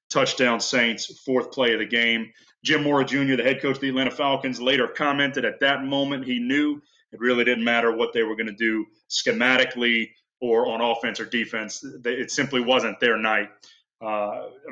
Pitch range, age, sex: 120-150 Hz, 30-49, male